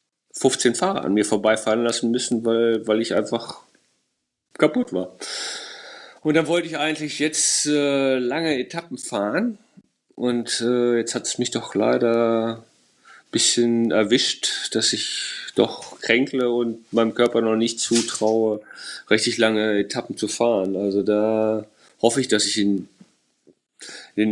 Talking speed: 140 wpm